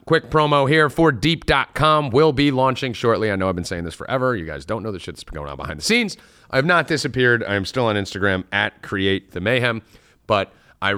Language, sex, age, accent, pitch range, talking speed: English, male, 30-49, American, 90-120 Hz, 225 wpm